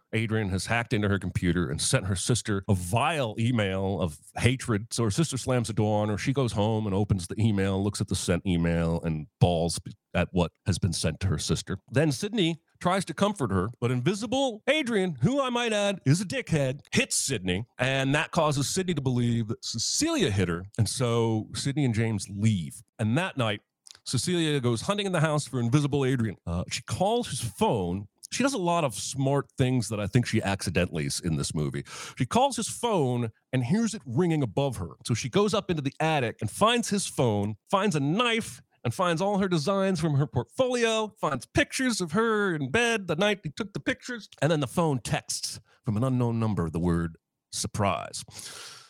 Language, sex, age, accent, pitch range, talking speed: English, male, 40-59, American, 105-175 Hz, 205 wpm